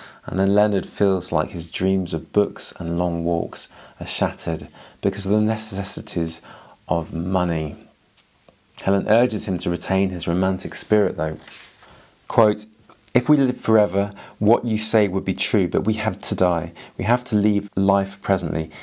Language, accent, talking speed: English, British, 165 wpm